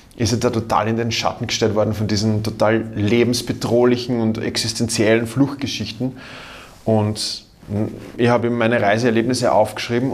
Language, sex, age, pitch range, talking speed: German, male, 20-39, 110-125 Hz, 130 wpm